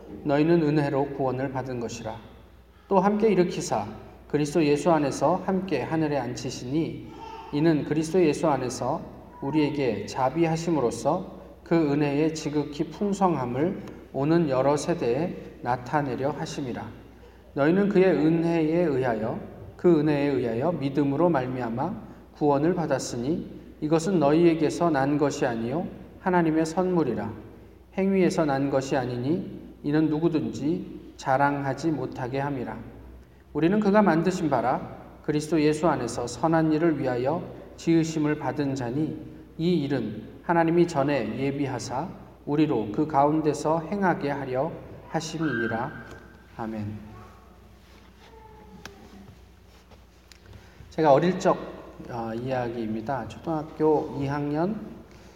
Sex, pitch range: male, 120-165 Hz